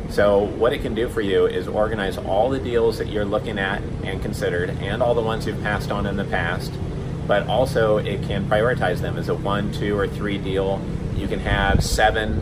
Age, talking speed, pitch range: 30-49, 215 wpm, 95-105 Hz